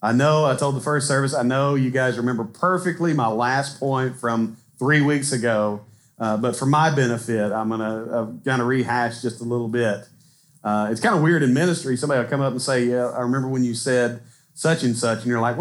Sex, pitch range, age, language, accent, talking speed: male, 120-155 Hz, 40-59, English, American, 230 wpm